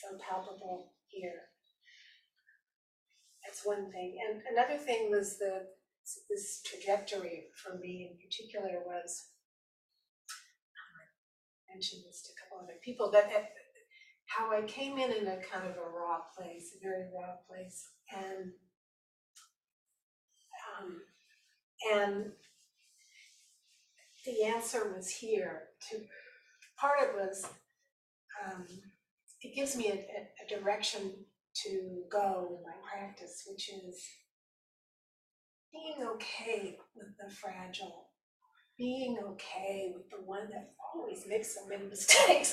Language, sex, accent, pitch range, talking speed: English, female, American, 190-230 Hz, 120 wpm